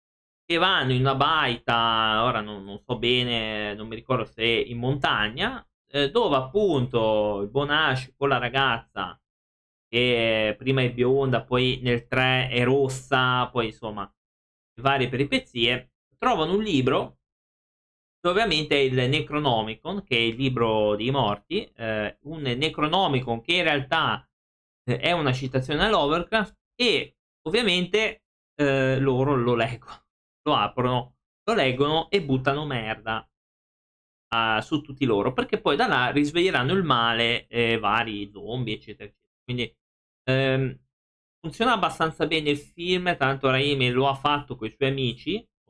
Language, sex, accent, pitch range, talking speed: Italian, male, native, 110-140 Hz, 140 wpm